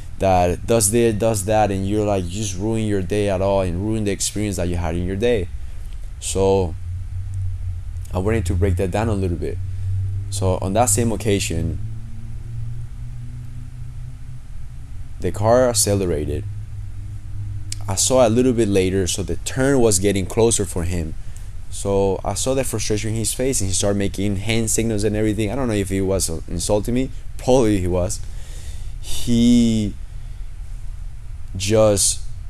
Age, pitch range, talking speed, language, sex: 20-39, 95-110 Hz, 155 wpm, English, male